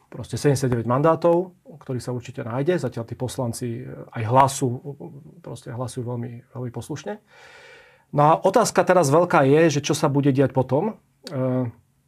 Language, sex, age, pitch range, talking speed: Slovak, male, 40-59, 130-150 Hz, 140 wpm